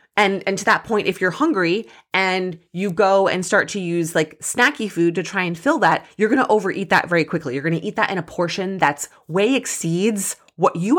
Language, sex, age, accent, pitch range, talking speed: English, female, 20-39, American, 155-215 Hz, 235 wpm